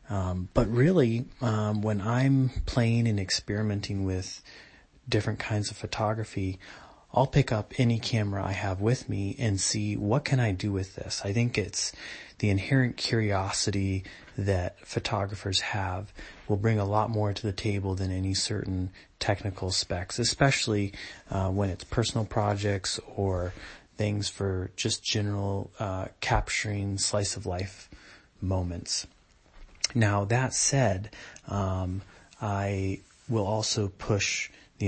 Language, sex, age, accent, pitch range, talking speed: English, male, 30-49, American, 95-110 Hz, 130 wpm